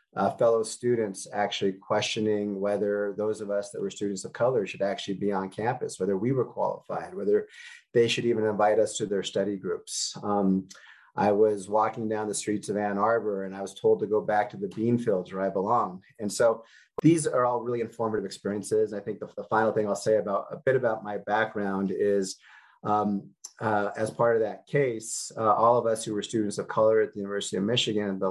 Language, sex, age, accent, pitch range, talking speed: English, male, 30-49, American, 100-115 Hz, 215 wpm